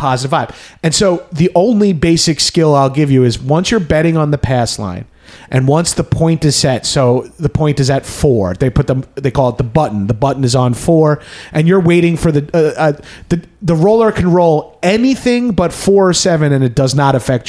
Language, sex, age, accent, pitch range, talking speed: English, male, 30-49, American, 130-165 Hz, 225 wpm